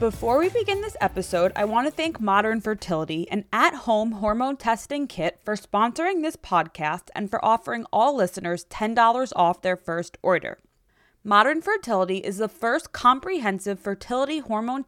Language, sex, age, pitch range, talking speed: English, female, 20-39, 200-275 Hz, 155 wpm